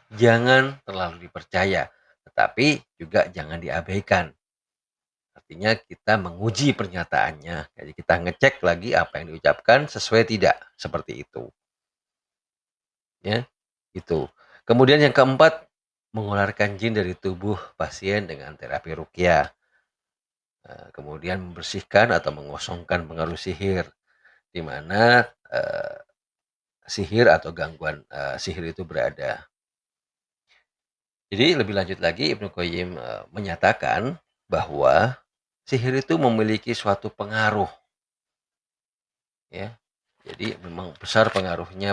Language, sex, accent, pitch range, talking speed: Indonesian, male, native, 90-115 Hz, 100 wpm